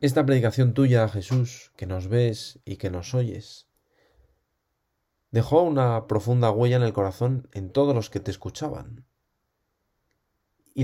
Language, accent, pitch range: Spanish, Spanish, 105-130 Hz